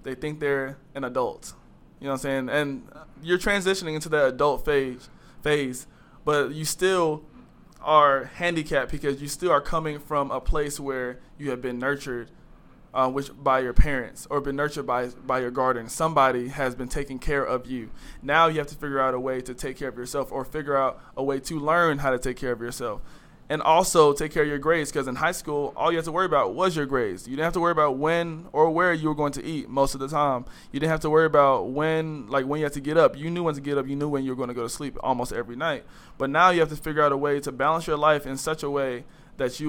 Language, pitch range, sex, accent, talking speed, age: English, 135-155 Hz, male, American, 260 wpm, 20-39